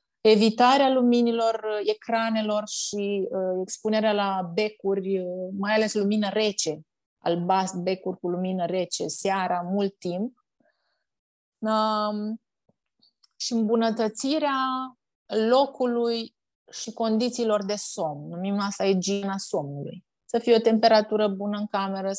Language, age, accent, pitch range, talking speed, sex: Romanian, 30-49, native, 190-245 Hz, 110 wpm, female